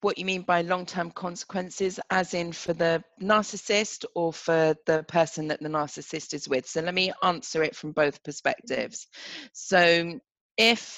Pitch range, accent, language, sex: 145-185 Hz, British, English, female